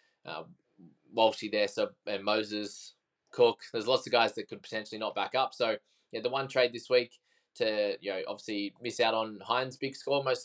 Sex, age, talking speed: male, 20-39, 200 wpm